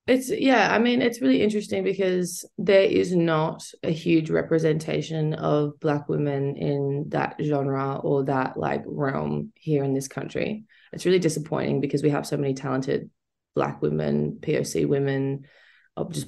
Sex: female